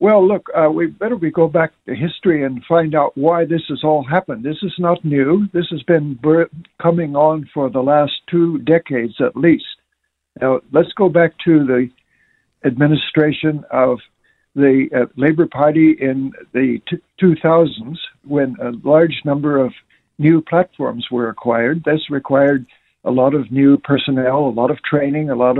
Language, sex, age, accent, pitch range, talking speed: English, male, 60-79, American, 135-160 Hz, 170 wpm